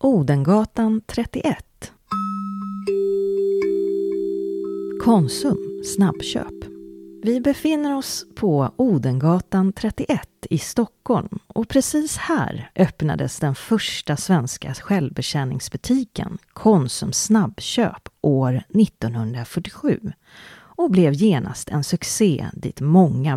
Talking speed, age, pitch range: 80 wpm, 40-59, 145-215 Hz